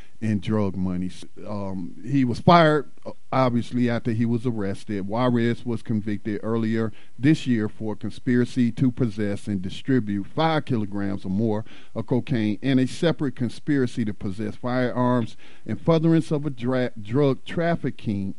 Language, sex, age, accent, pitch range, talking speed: English, male, 50-69, American, 105-130 Hz, 140 wpm